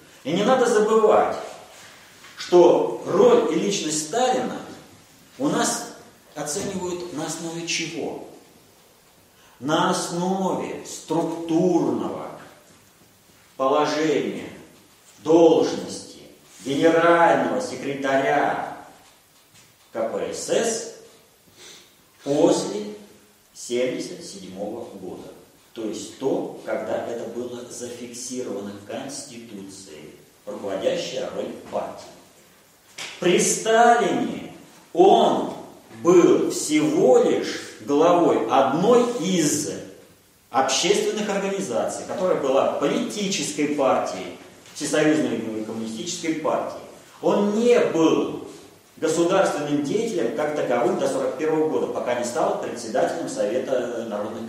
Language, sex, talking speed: Russian, male, 80 wpm